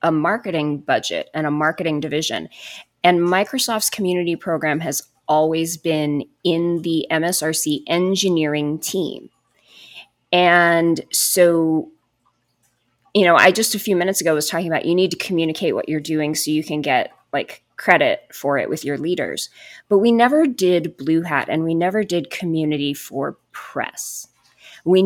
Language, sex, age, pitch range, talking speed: English, female, 20-39, 150-180 Hz, 155 wpm